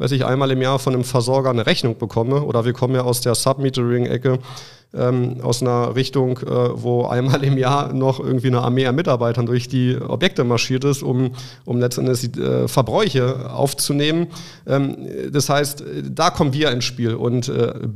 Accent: German